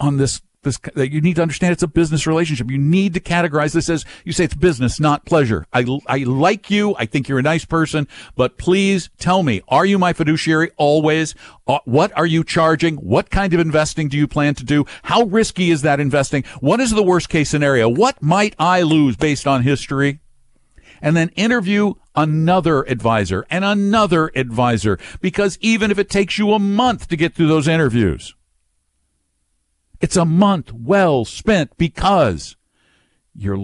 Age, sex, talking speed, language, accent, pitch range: 60-79, male, 185 wpm, English, American, 105-170 Hz